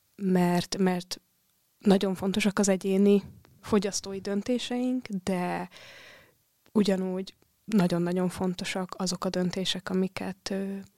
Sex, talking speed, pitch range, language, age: female, 85 wpm, 185-210 Hz, Hungarian, 20-39